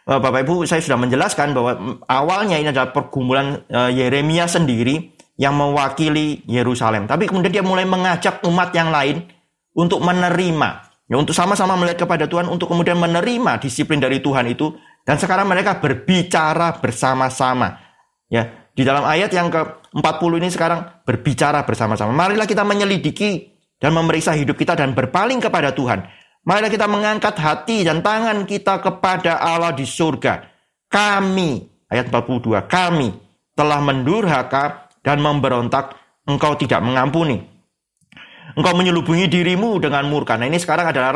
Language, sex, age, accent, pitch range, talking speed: Indonesian, male, 30-49, native, 140-180 Hz, 135 wpm